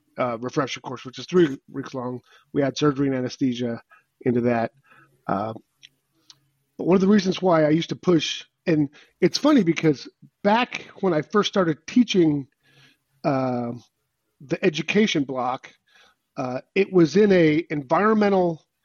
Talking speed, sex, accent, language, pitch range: 145 wpm, male, American, English, 135-175 Hz